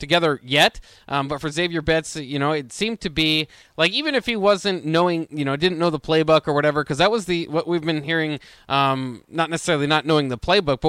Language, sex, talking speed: English, male, 235 wpm